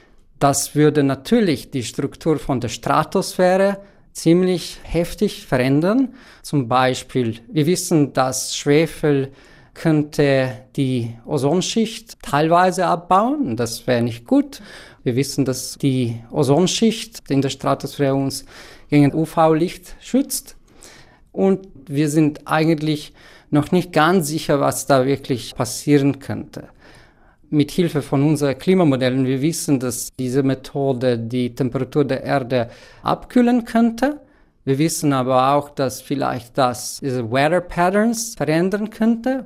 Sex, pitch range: male, 135-180 Hz